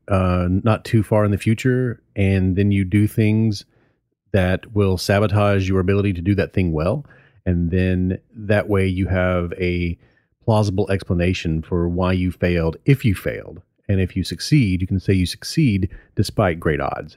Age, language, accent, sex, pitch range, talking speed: 30-49, English, American, male, 90-110 Hz, 175 wpm